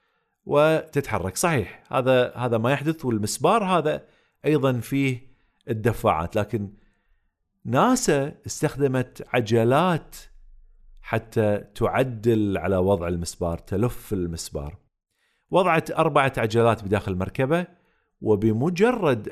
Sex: male